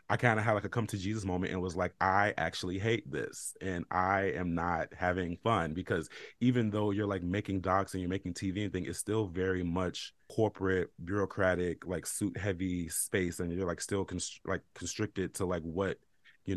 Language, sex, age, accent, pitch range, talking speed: English, male, 30-49, American, 90-110 Hz, 205 wpm